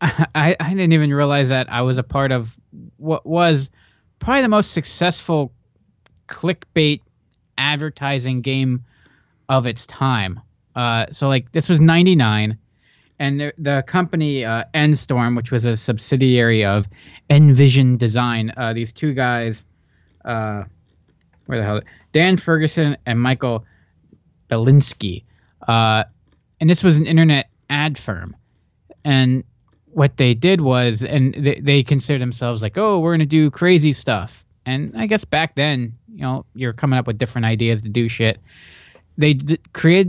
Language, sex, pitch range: English, male, 115-155 Hz